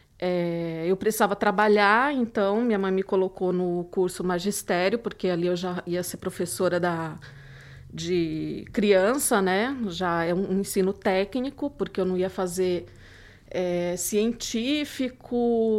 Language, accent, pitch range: Portuguese, Brazilian, 180-230 Hz